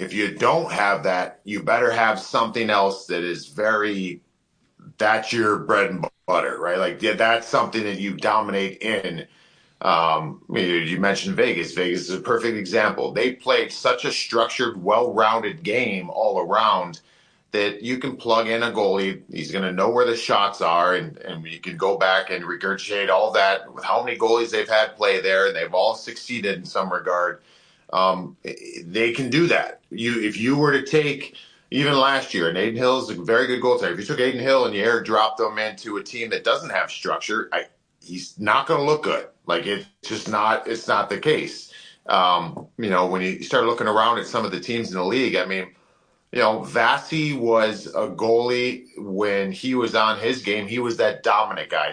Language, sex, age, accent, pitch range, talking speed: English, male, 40-59, American, 95-125 Hz, 200 wpm